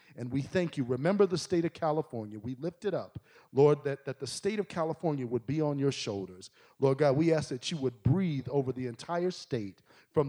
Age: 40-59